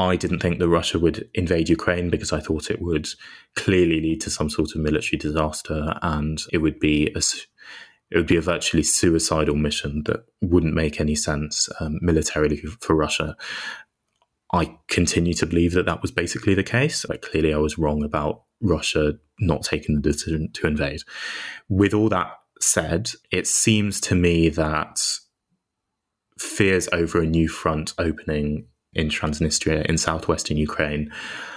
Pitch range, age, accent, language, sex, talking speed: 75-85 Hz, 20-39, British, English, male, 155 wpm